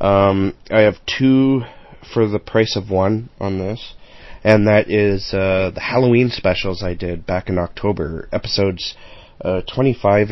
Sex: male